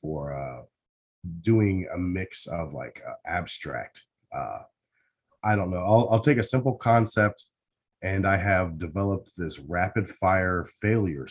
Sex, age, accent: male, 30-49, American